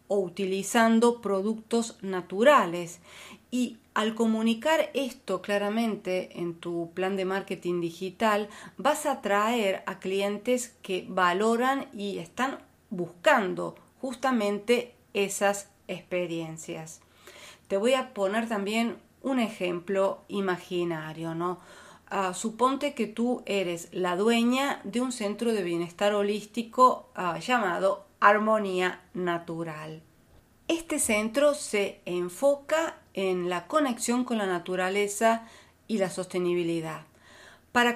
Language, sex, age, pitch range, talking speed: Spanish, female, 40-59, 185-245 Hz, 105 wpm